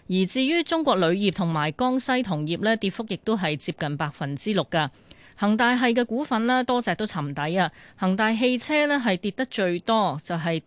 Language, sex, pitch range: Chinese, female, 160-220 Hz